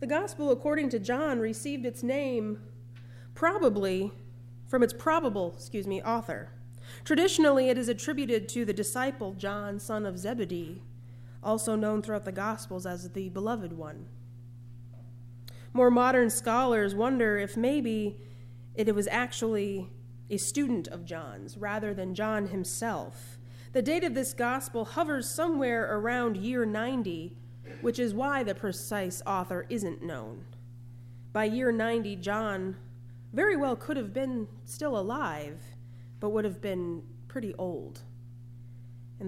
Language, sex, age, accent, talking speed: English, female, 30-49, American, 135 wpm